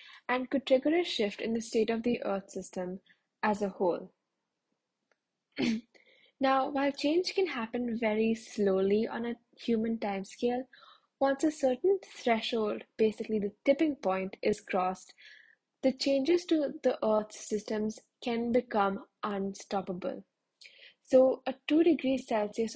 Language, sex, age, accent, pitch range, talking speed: English, female, 10-29, Indian, 205-265 Hz, 130 wpm